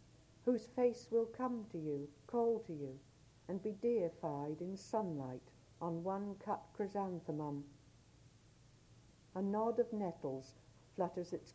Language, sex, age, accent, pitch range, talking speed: English, female, 60-79, British, 145-220 Hz, 120 wpm